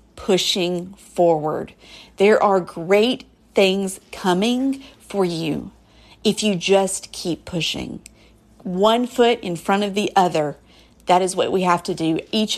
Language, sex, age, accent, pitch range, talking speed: English, female, 40-59, American, 180-225 Hz, 140 wpm